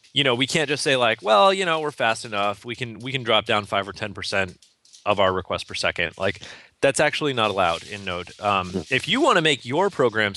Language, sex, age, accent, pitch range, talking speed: English, male, 30-49, American, 100-130 Hz, 250 wpm